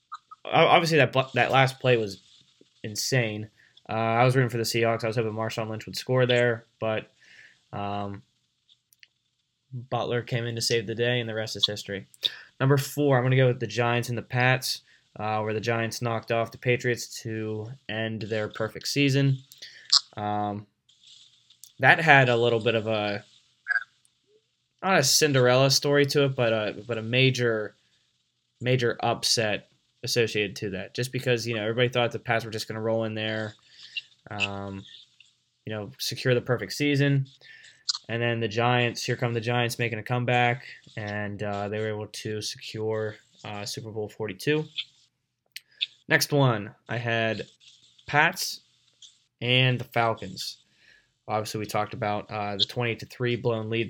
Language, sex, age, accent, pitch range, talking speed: English, male, 10-29, American, 110-125 Hz, 165 wpm